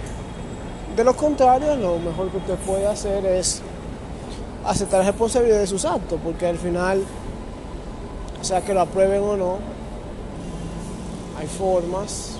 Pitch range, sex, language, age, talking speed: 185-235 Hz, male, Spanish, 20-39, 130 wpm